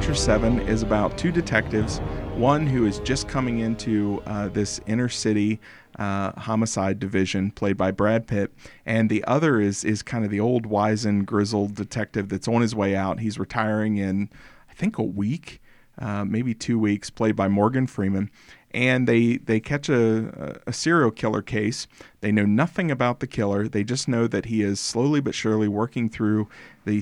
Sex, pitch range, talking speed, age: male, 100-120 Hz, 180 wpm, 40-59